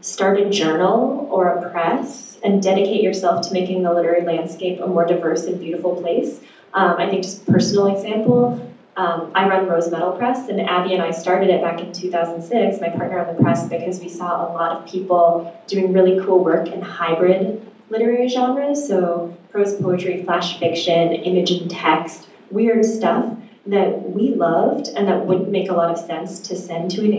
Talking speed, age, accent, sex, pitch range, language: 190 wpm, 20-39, American, female, 170-215 Hz, English